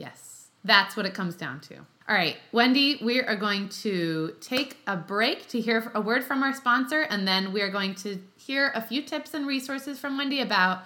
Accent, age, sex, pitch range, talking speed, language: American, 20-39, female, 185-270 Hz, 215 wpm, English